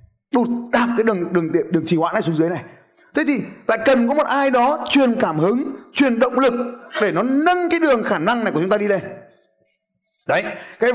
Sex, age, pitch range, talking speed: male, 20-39, 195-285 Hz, 230 wpm